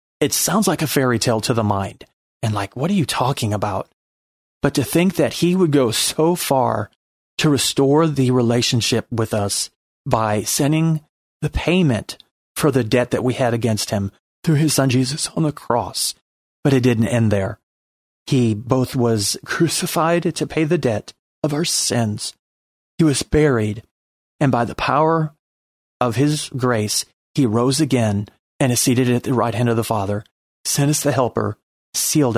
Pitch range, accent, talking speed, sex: 110-145 Hz, American, 175 wpm, male